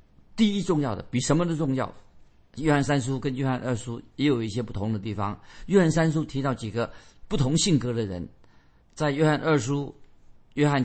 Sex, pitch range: male, 110-155 Hz